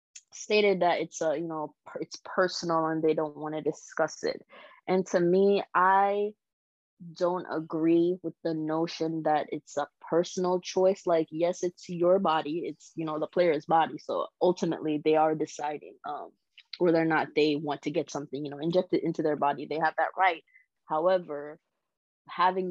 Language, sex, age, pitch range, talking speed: English, female, 20-39, 155-180 Hz, 175 wpm